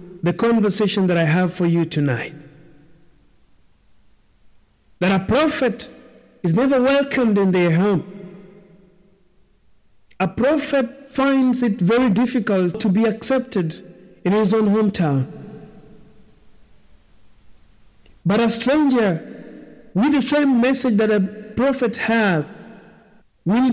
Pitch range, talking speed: 180-245 Hz, 105 wpm